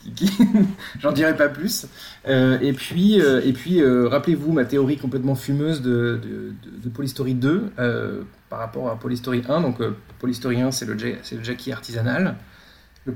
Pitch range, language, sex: 120-160 Hz, French, male